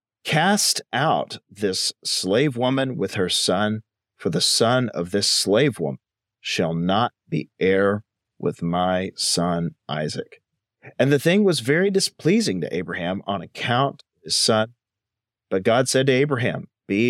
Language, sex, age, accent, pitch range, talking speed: English, male, 40-59, American, 95-130 Hz, 145 wpm